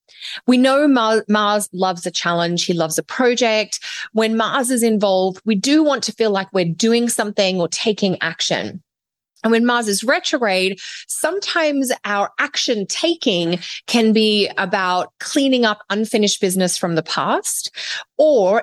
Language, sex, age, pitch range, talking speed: English, female, 30-49, 180-230 Hz, 150 wpm